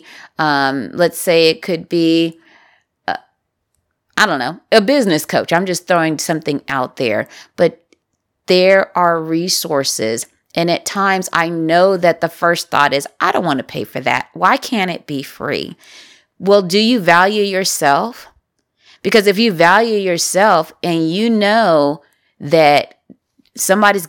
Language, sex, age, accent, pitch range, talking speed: English, female, 30-49, American, 155-190 Hz, 150 wpm